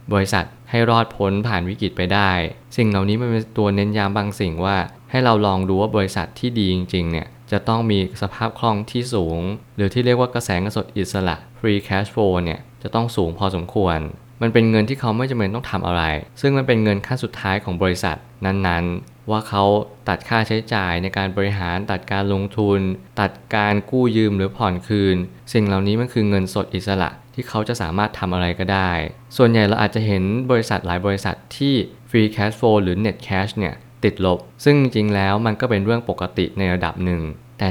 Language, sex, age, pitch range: Thai, male, 20-39, 95-115 Hz